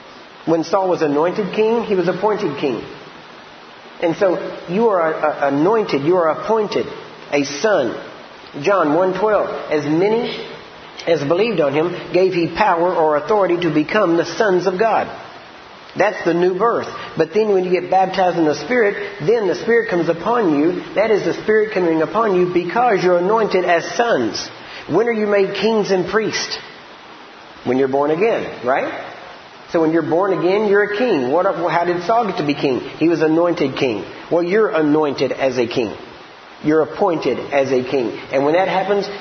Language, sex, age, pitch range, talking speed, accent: English, male, 50-69, 155-205 Hz, 175 wpm, American